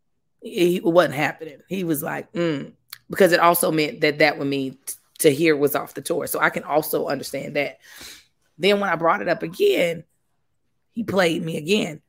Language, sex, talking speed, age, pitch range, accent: English, female, 190 wpm, 20-39, 145-180 Hz, American